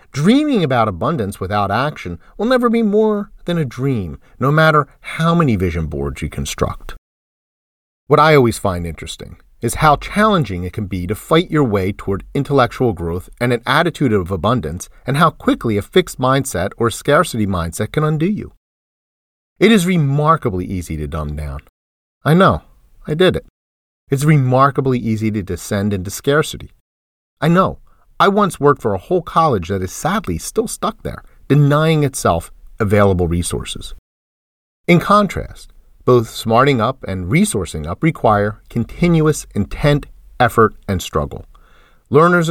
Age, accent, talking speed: 40-59, American, 150 wpm